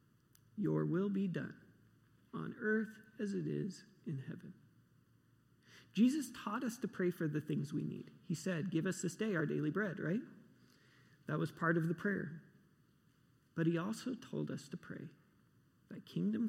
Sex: male